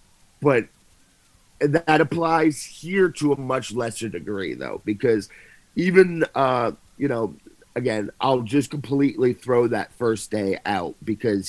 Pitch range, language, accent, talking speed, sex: 105-140 Hz, English, American, 130 wpm, male